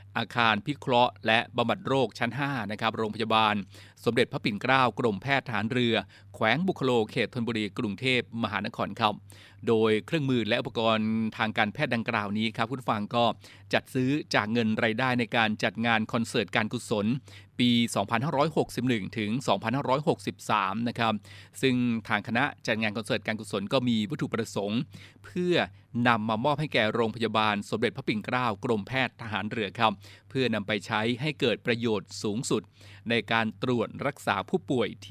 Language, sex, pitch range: Thai, male, 110-130 Hz